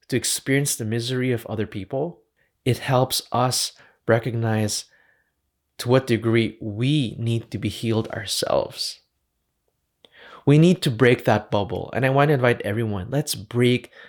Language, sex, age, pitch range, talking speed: English, male, 20-39, 110-130 Hz, 140 wpm